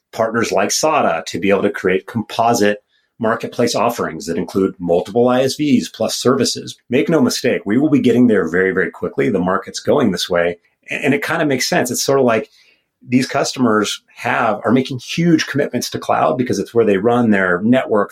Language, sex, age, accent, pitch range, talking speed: English, male, 30-49, American, 95-125 Hz, 195 wpm